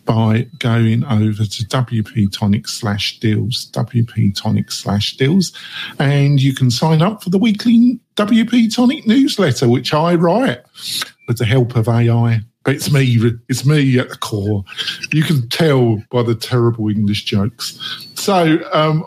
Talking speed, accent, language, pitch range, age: 150 wpm, British, English, 125-175 Hz, 50-69